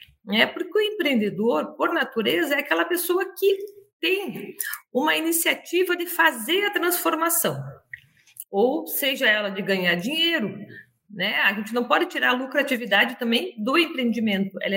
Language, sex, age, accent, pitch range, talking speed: Portuguese, female, 50-69, Brazilian, 230-335 Hz, 140 wpm